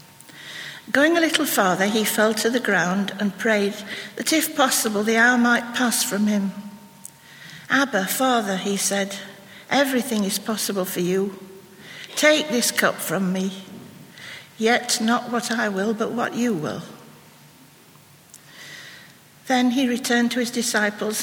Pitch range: 200-245 Hz